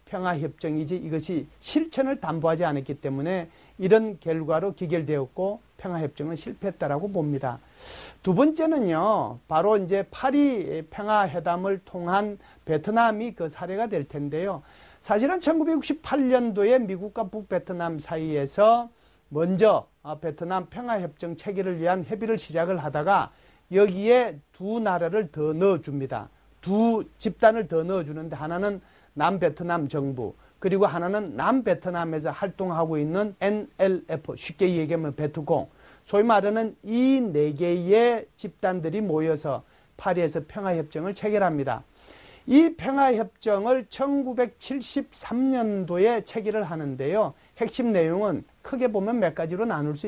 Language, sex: Korean, male